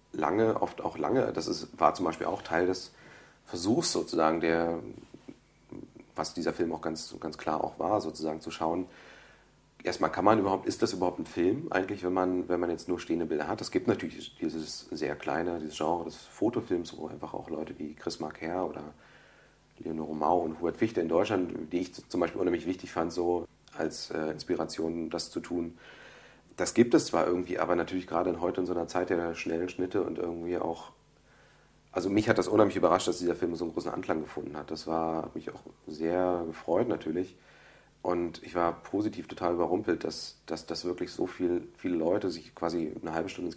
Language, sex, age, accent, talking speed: German, male, 40-59, German, 200 wpm